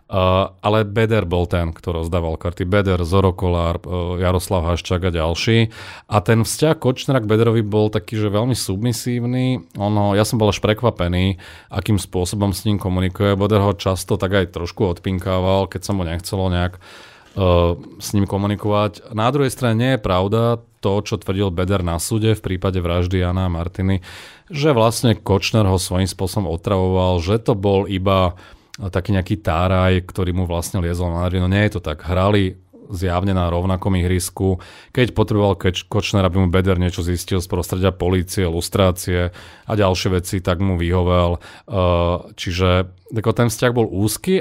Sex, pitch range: male, 90-105 Hz